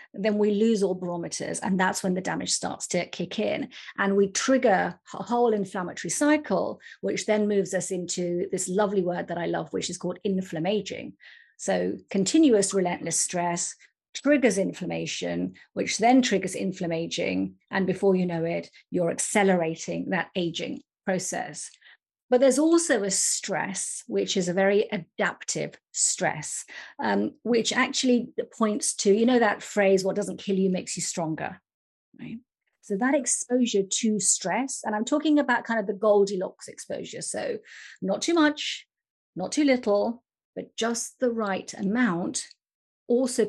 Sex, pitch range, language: female, 185-240 Hz, English